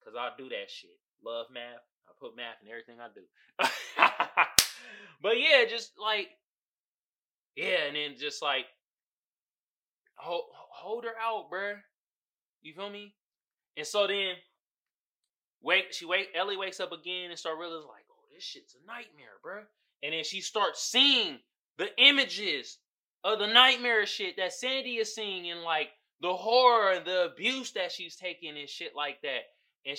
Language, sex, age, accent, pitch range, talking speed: English, male, 20-39, American, 165-220 Hz, 160 wpm